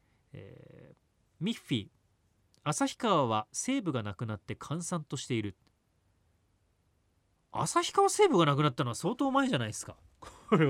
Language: Japanese